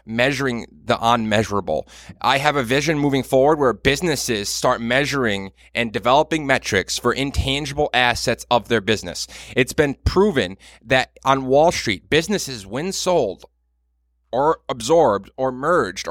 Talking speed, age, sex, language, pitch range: 135 wpm, 30-49, male, English, 105-150 Hz